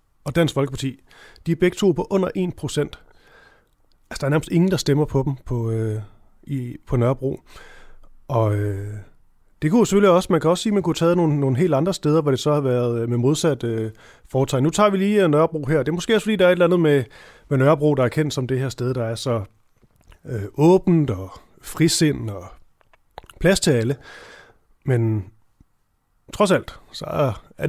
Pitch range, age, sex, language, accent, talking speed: 120-160 Hz, 30-49, male, Danish, native, 210 wpm